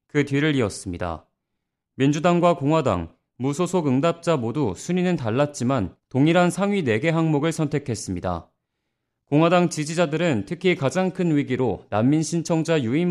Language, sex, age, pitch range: Korean, male, 30-49, 120-170 Hz